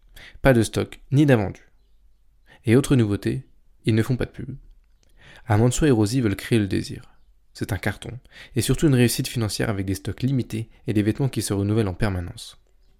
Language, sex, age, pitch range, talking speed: French, male, 20-39, 105-130 Hz, 195 wpm